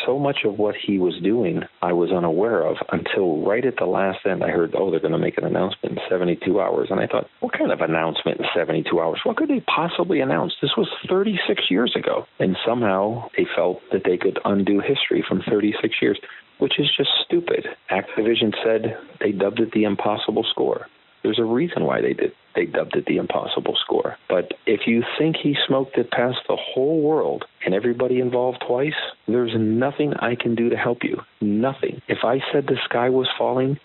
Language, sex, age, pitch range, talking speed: English, male, 40-59, 100-130 Hz, 205 wpm